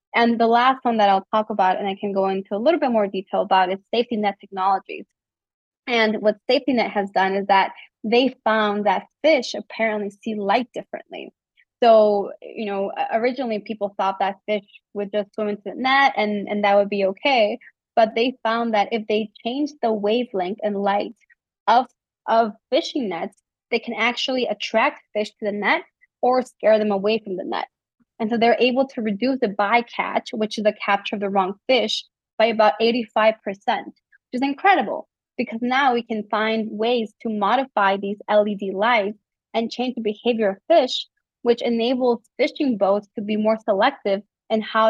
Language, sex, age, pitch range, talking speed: English, female, 20-39, 205-235 Hz, 185 wpm